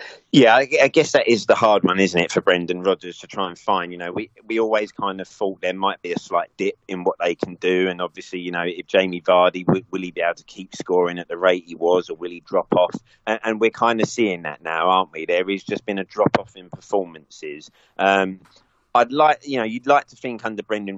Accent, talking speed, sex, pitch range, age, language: British, 260 wpm, male, 90-110 Hz, 30-49, English